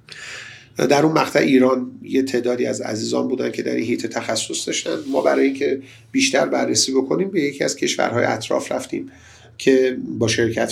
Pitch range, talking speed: 115-170 Hz, 170 wpm